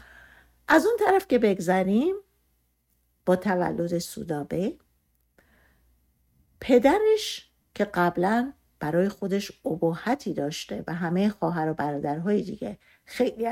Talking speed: 100 wpm